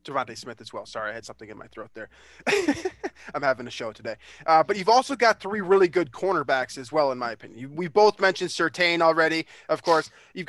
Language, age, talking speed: English, 20-39, 225 wpm